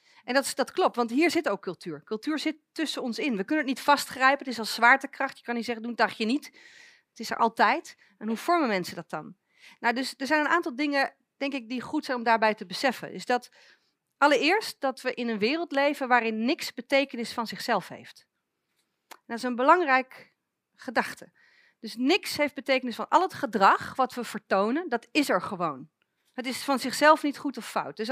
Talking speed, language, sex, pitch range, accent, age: 220 wpm, Dutch, female, 235-310 Hz, Dutch, 40-59